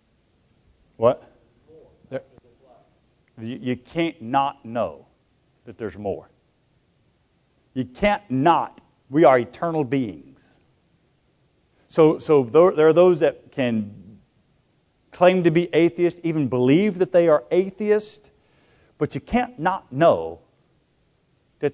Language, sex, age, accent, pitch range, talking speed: English, male, 50-69, American, 125-180 Hz, 110 wpm